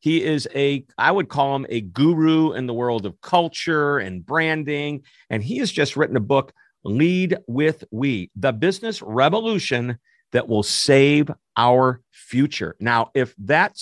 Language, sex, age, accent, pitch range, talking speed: English, male, 50-69, American, 115-155 Hz, 160 wpm